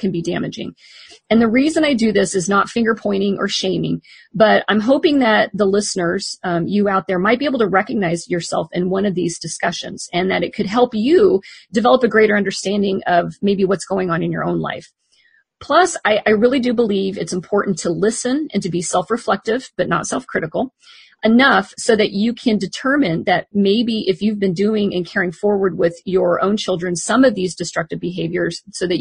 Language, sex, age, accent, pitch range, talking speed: English, female, 40-59, American, 175-220 Hz, 205 wpm